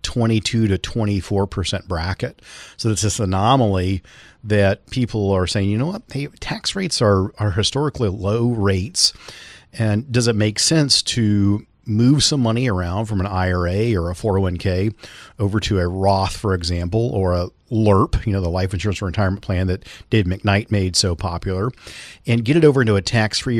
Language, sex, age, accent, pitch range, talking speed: English, male, 40-59, American, 95-115 Hz, 170 wpm